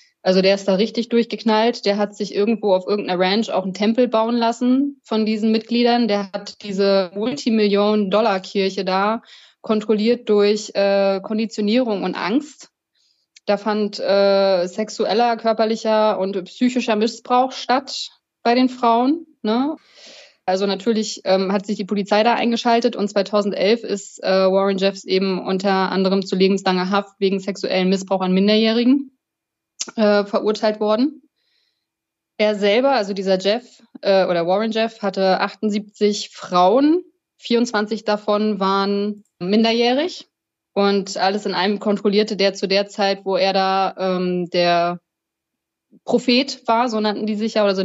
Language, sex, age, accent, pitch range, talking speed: German, female, 20-39, German, 195-230 Hz, 140 wpm